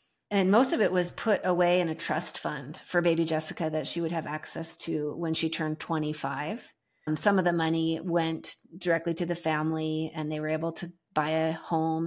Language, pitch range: English, 160-195 Hz